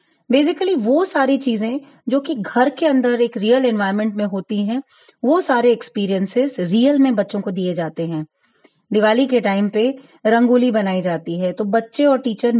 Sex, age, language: female, 20-39, Gujarati